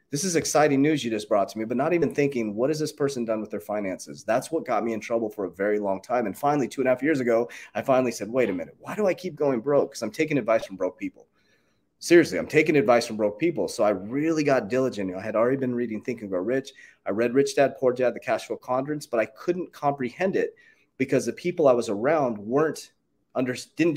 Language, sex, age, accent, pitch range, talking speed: English, male, 30-49, American, 115-155 Hz, 260 wpm